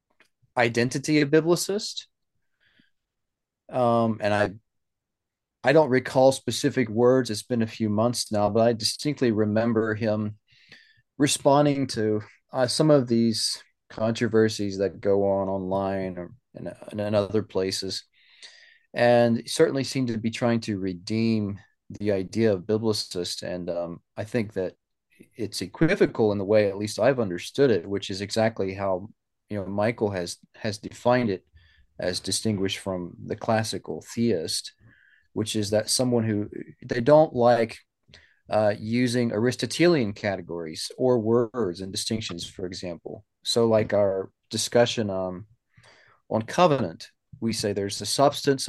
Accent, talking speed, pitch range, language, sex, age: American, 140 wpm, 100-120 Hz, English, male, 30-49